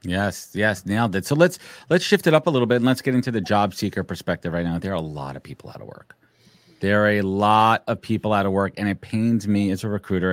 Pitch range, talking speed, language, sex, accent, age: 90-115 Hz, 280 wpm, English, male, American, 40-59